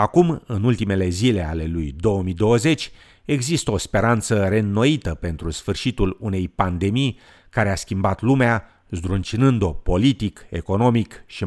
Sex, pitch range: male, 90-120 Hz